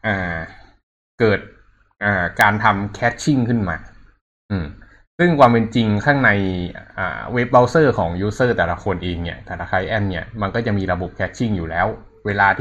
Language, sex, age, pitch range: Thai, male, 20-39, 95-110 Hz